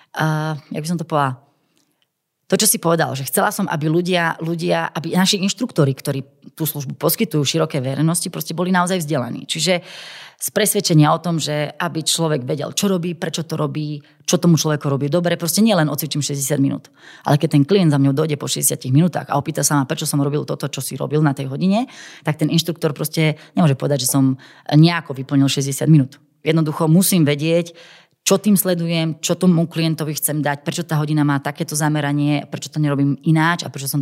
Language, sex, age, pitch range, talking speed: Slovak, female, 30-49, 145-170 Hz, 200 wpm